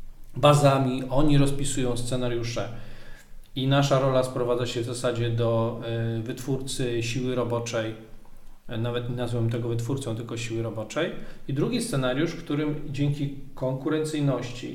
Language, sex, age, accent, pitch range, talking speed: Polish, male, 40-59, native, 120-140 Hz, 120 wpm